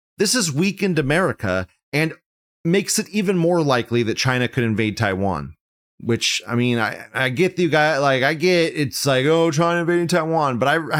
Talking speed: 190 wpm